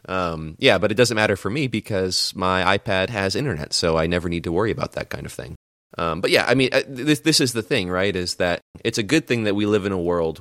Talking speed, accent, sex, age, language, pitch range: 270 wpm, American, male, 30-49, English, 80-100 Hz